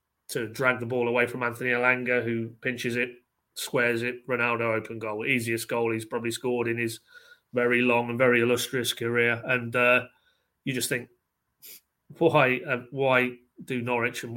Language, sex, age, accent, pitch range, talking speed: English, male, 30-49, British, 120-145 Hz, 165 wpm